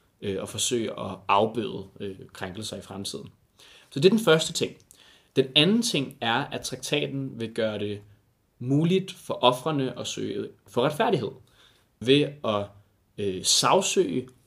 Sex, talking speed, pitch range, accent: male, 135 wpm, 110-150 Hz, native